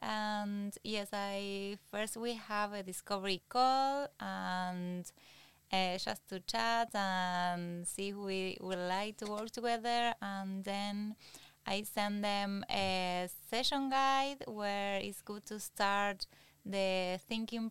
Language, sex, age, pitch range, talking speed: English, female, 20-39, 190-225 Hz, 130 wpm